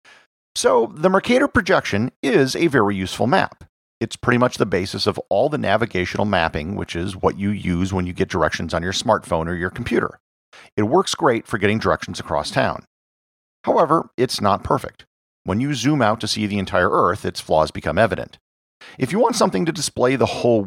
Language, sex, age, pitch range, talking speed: English, male, 50-69, 90-130 Hz, 195 wpm